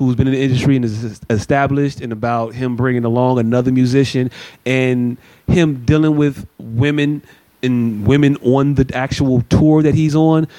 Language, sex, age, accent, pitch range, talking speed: English, male, 30-49, American, 120-145 Hz, 165 wpm